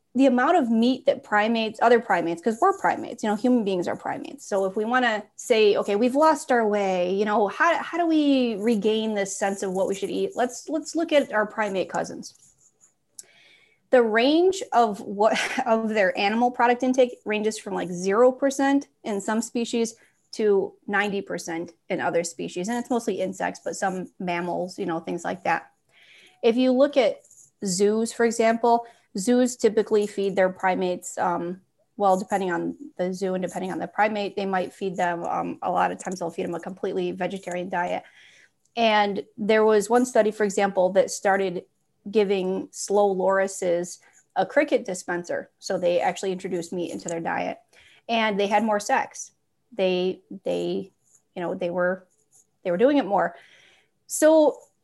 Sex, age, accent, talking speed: female, 30-49, American, 175 wpm